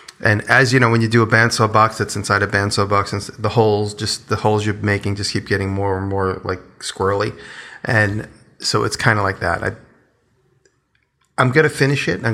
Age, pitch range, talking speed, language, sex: 30-49, 100-115 Hz, 210 wpm, English, male